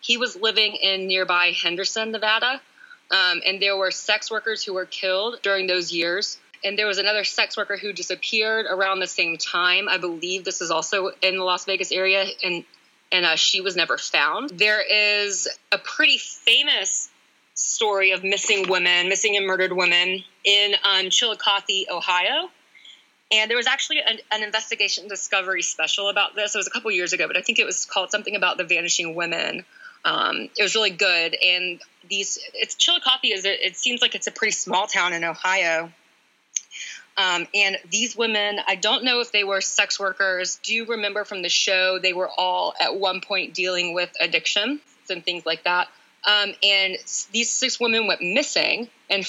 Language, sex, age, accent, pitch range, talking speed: English, female, 20-39, American, 185-215 Hz, 185 wpm